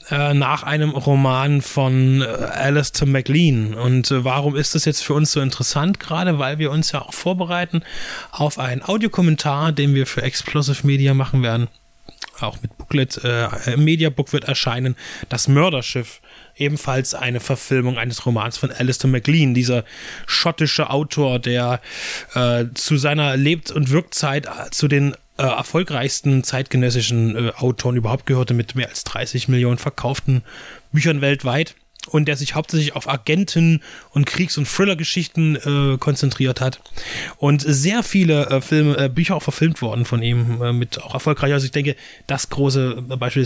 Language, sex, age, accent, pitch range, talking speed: German, male, 20-39, German, 125-150 Hz, 155 wpm